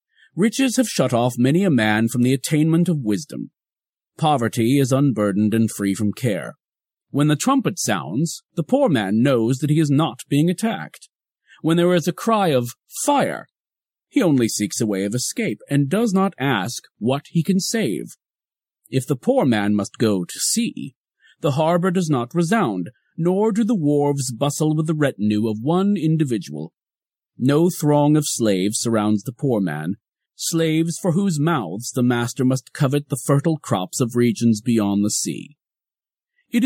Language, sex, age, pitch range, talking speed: English, male, 40-59, 115-170 Hz, 170 wpm